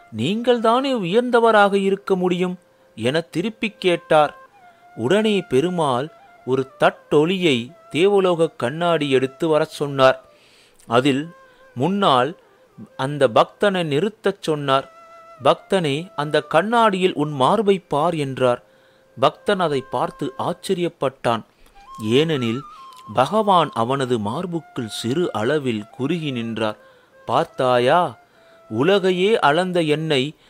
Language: Tamil